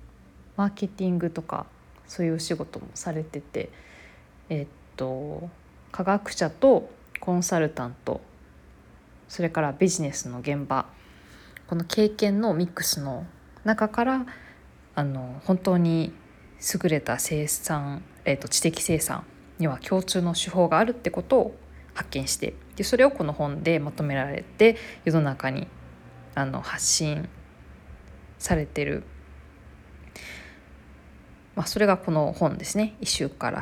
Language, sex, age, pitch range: Japanese, female, 20-39, 115-175 Hz